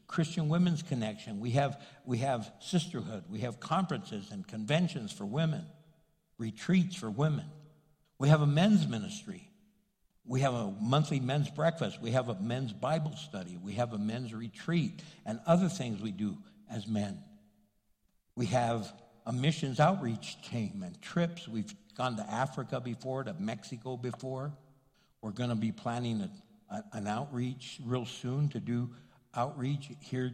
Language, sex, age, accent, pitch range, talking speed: English, male, 60-79, American, 115-165 Hz, 150 wpm